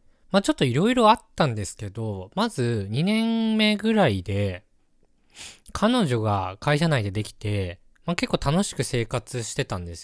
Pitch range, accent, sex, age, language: 105-165 Hz, native, male, 20-39, Japanese